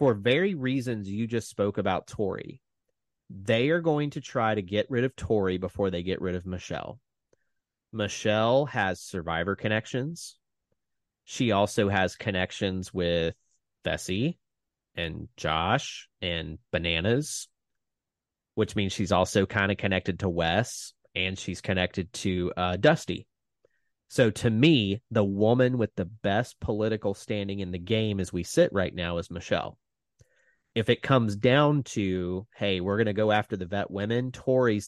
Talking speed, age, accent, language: 150 wpm, 30-49, American, English